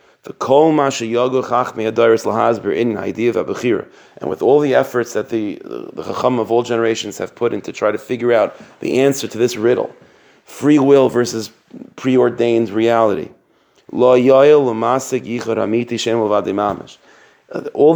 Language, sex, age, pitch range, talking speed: English, male, 40-59, 110-135 Hz, 110 wpm